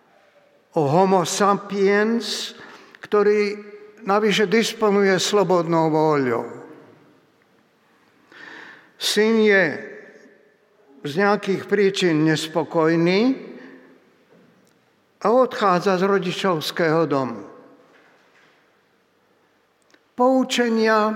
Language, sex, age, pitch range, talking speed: Slovak, male, 60-79, 180-215 Hz, 55 wpm